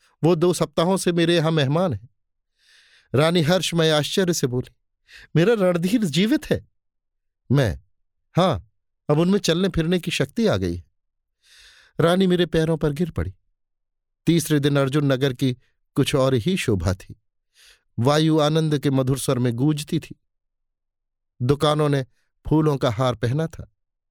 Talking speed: 145 wpm